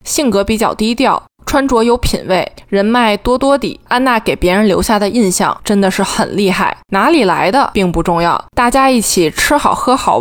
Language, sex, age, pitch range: Chinese, female, 20-39, 190-240 Hz